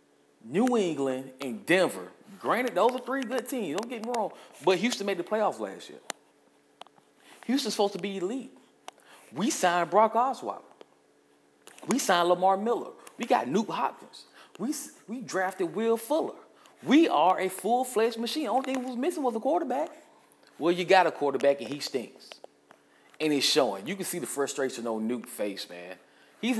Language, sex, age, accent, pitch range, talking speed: English, male, 30-49, American, 140-230 Hz, 175 wpm